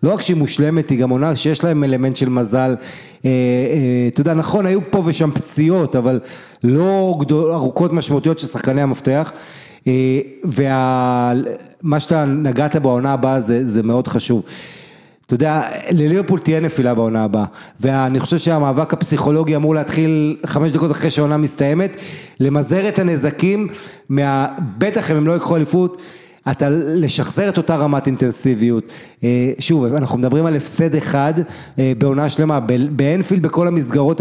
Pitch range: 135-165 Hz